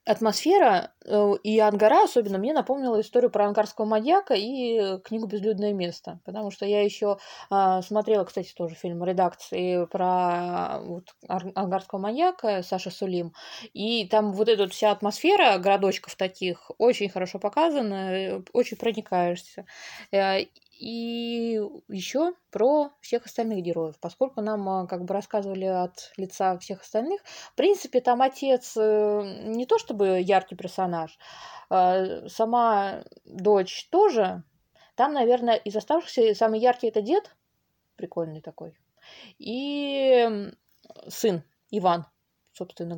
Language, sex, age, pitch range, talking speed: Russian, female, 20-39, 185-230 Hz, 120 wpm